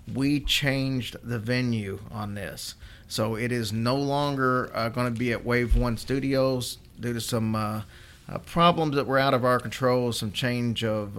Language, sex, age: English, male, 40-59